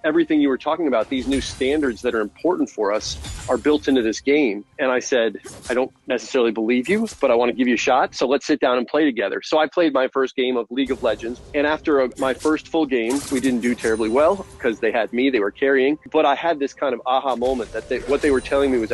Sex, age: male, 40-59